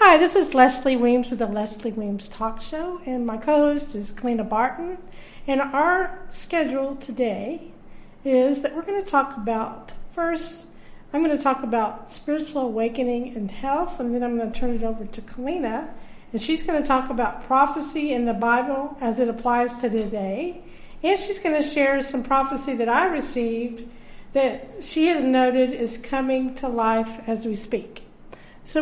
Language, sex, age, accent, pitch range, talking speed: English, female, 50-69, American, 230-285 Hz, 175 wpm